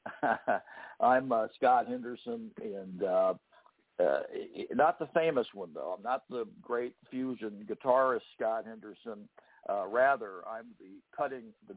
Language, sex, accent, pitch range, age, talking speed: English, male, American, 110-165 Hz, 60-79, 135 wpm